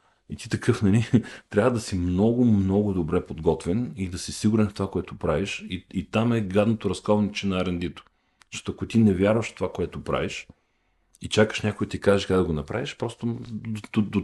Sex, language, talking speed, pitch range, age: male, Bulgarian, 215 wpm, 95-115 Hz, 40-59